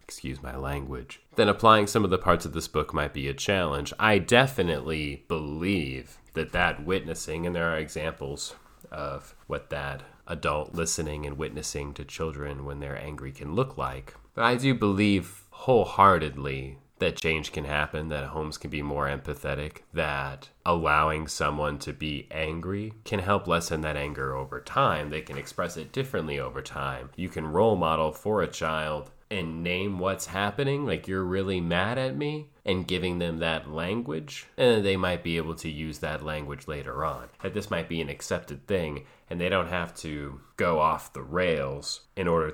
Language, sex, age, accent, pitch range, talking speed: English, male, 30-49, American, 70-90 Hz, 180 wpm